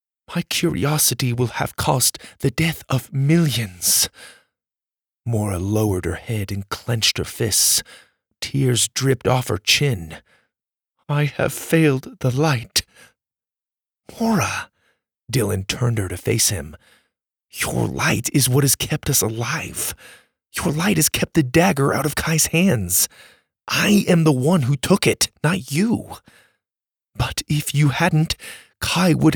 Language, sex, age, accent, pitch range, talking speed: English, male, 30-49, American, 120-165 Hz, 135 wpm